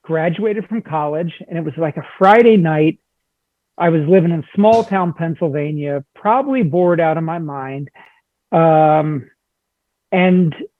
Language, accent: English, American